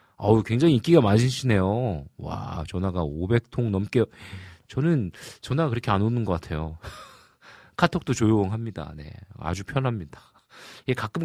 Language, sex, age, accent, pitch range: Korean, male, 40-59, native, 95-135 Hz